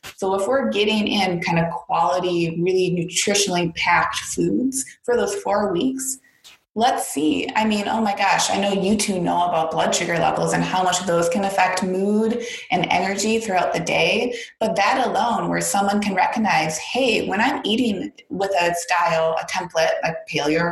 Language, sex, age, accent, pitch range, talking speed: English, female, 20-39, American, 180-245 Hz, 180 wpm